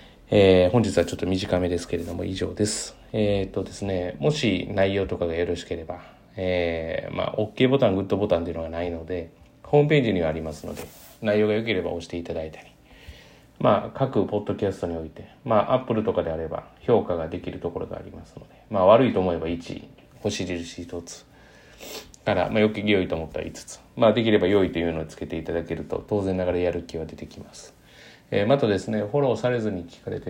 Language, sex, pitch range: Japanese, male, 85-105 Hz